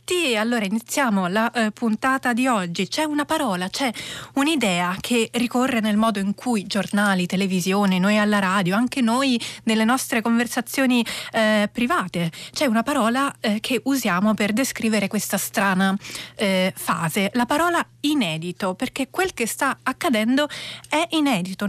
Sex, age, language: female, 30-49, Italian